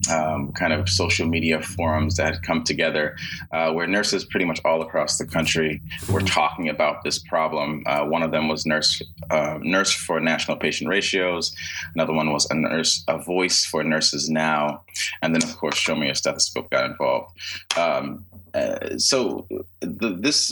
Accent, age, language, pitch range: American, 20-39, English, 80-90 Hz